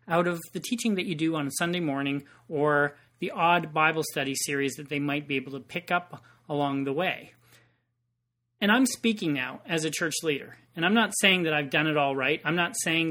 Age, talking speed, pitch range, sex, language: 40-59, 225 wpm, 140-180 Hz, male, English